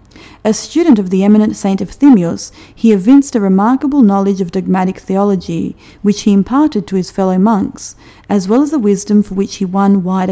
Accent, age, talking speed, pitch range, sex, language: Australian, 40-59, 190 wpm, 190-235 Hz, female, English